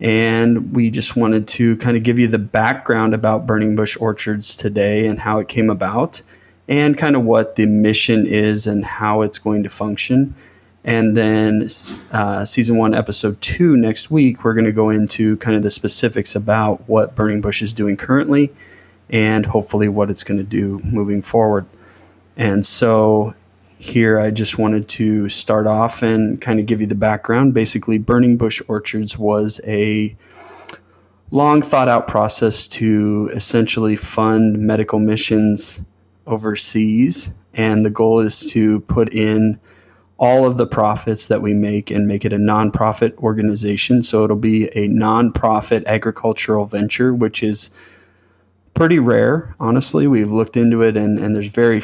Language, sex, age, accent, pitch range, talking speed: English, male, 30-49, American, 105-115 Hz, 160 wpm